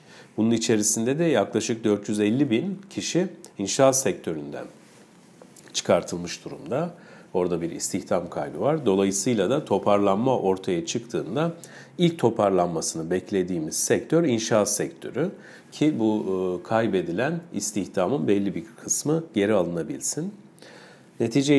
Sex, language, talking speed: male, Turkish, 105 wpm